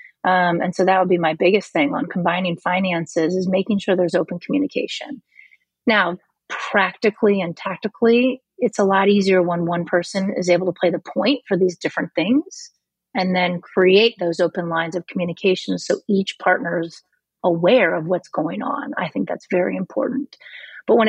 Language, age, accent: English, 30-49, American